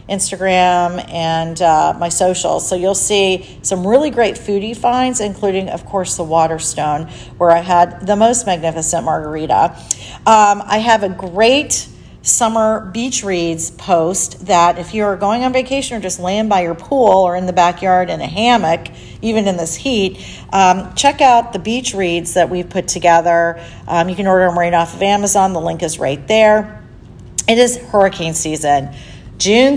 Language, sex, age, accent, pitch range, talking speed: English, female, 40-59, American, 175-220 Hz, 175 wpm